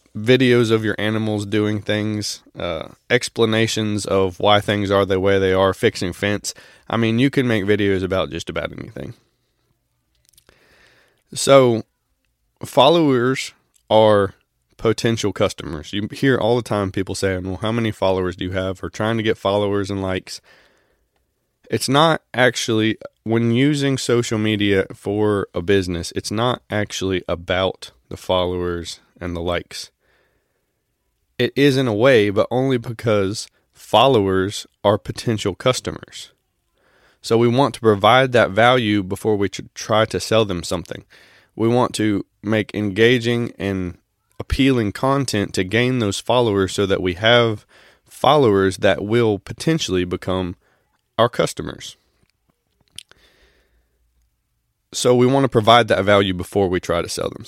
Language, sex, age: English, male, 20-39